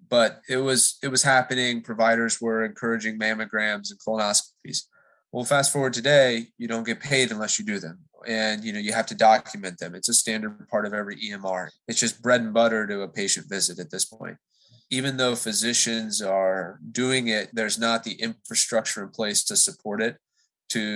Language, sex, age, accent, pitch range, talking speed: English, male, 20-39, American, 105-120 Hz, 190 wpm